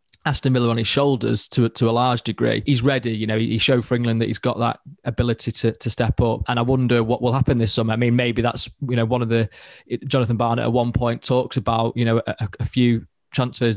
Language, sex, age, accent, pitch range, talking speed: English, male, 20-39, British, 115-125 Hz, 255 wpm